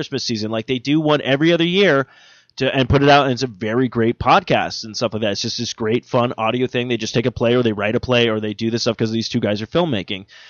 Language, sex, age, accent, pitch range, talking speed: English, male, 20-39, American, 115-150 Hz, 305 wpm